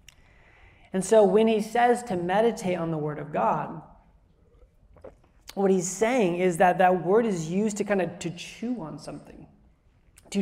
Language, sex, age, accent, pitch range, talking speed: English, male, 20-39, American, 160-205 Hz, 165 wpm